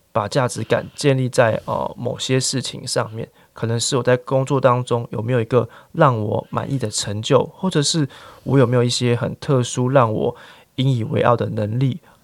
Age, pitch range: 20-39, 110-140 Hz